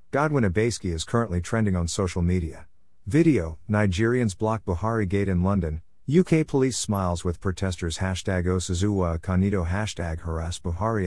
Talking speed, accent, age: 135 wpm, American, 50-69